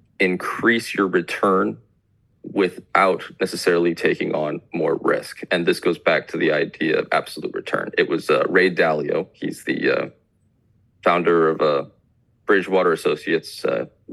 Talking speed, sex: 145 wpm, male